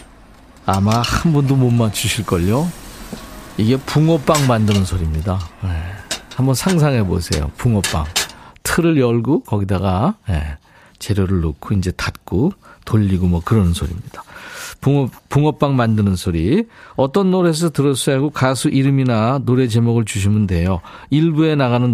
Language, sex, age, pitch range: Korean, male, 50-69, 100-150 Hz